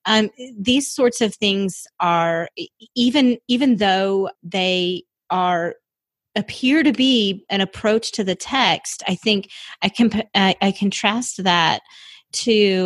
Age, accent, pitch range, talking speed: 30-49, American, 175-220 Hz, 130 wpm